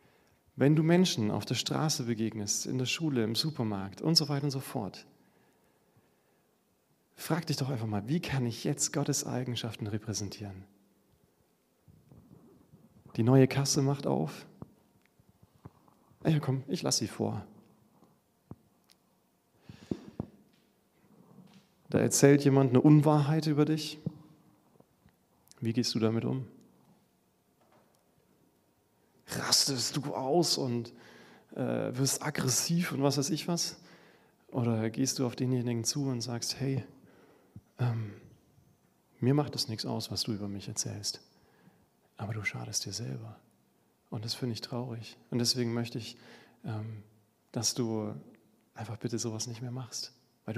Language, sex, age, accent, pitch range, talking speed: German, male, 40-59, German, 115-150 Hz, 130 wpm